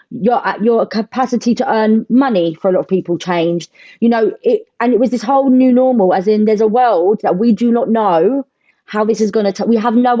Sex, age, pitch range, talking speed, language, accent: female, 30-49, 195-250 Hz, 235 wpm, English, British